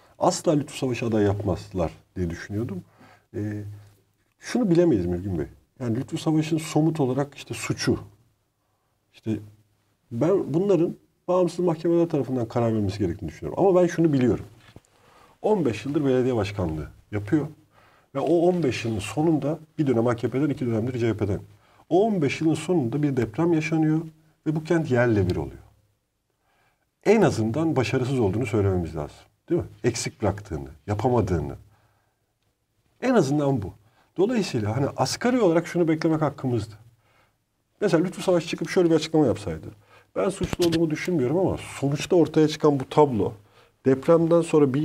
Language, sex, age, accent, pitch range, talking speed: Turkish, male, 50-69, native, 110-170 Hz, 140 wpm